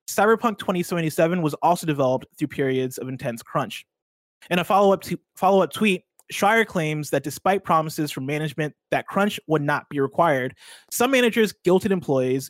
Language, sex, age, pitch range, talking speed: English, male, 20-39, 135-175 Hz, 150 wpm